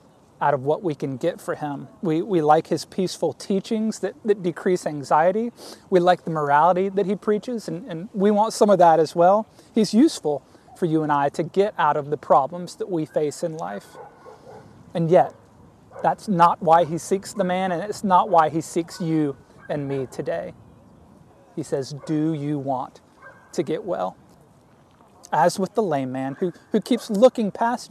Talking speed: 190 wpm